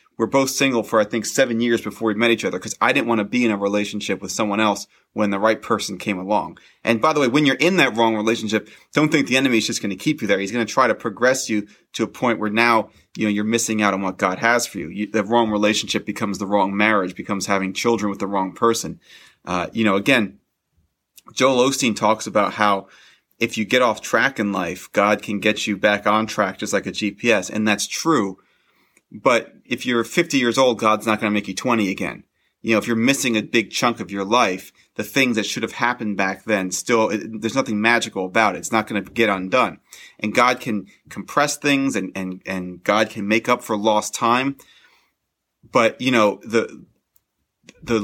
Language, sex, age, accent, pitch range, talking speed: English, male, 30-49, American, 105-120 Hz, 235 wpm